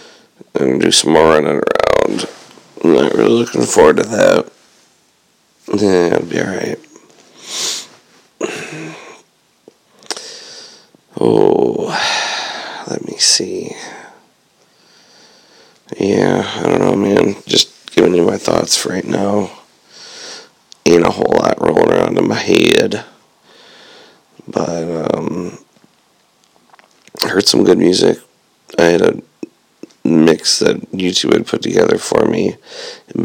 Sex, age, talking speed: male, 40-59, 115 wpm